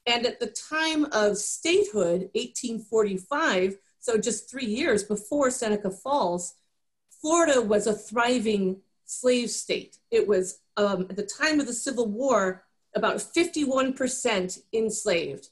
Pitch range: 205-260 Hz